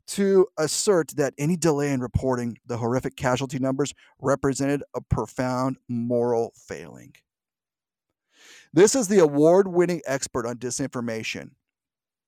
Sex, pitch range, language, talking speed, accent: male, 130-175 Hz, English, 110 wpm, American